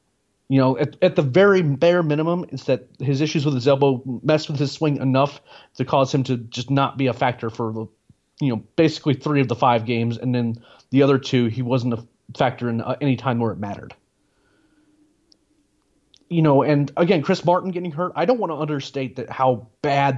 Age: 30-49